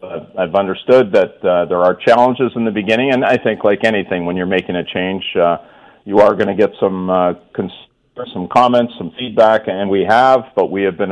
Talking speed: 220 wpm